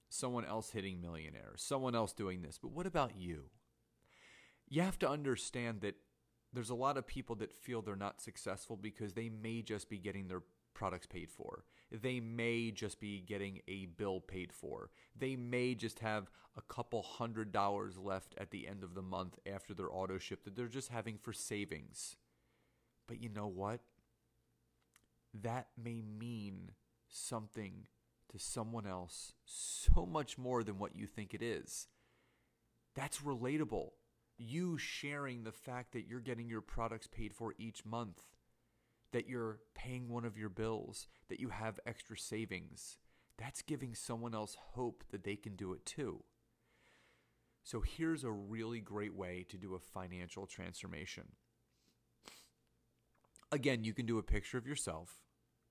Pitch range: 100-120 Hz